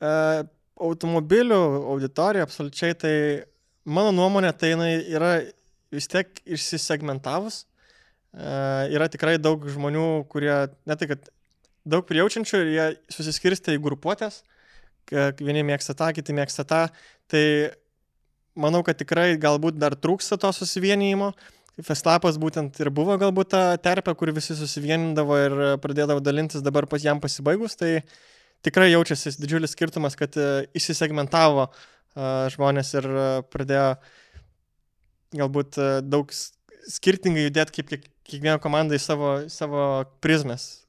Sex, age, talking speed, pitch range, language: male, 20-39, 125 wpm, 140-165 Hz, English